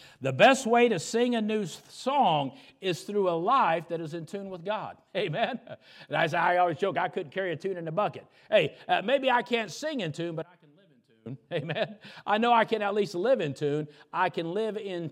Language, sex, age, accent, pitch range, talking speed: English, male, 50-69, American, 155-215 Hz, 235 wpm